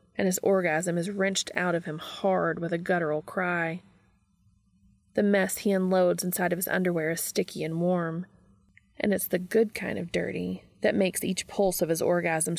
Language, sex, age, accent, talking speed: English, female, 20-39, American, 185 wpm